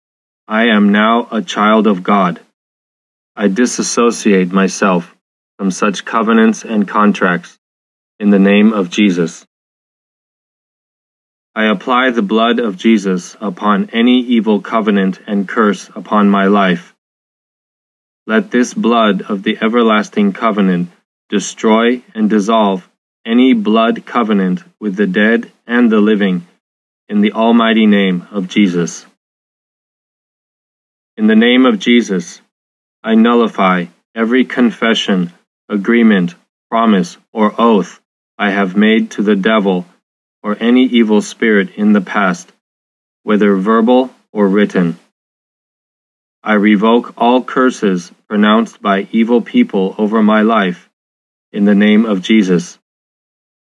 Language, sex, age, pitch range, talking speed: English, male, 20-39, 100-115 Hz, 120 wpm